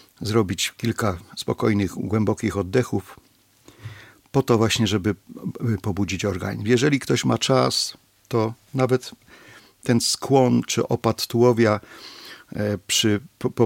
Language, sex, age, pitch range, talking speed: Polish, male, 50-69, 105-120 Hz, 105 wpm